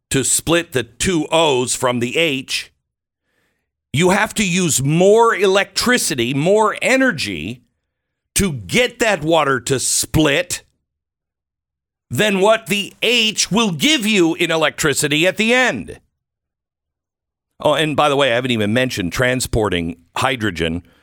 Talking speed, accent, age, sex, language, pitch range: 130 wpm, American, 50-69, male, English, 110-180 Hz